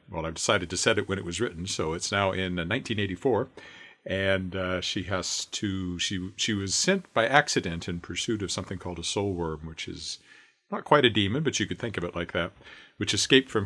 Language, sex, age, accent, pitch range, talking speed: English, male, 50-69, American, 90-115 Hz, 225 wpm